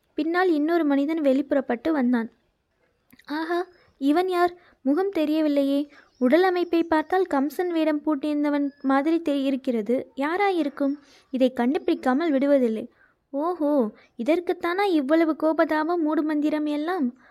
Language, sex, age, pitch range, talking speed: Tamil, female, 20-39, 265-325 Hz, 100 wpm